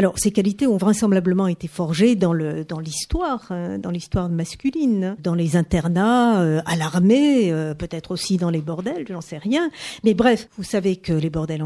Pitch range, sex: 175-235 Hz, female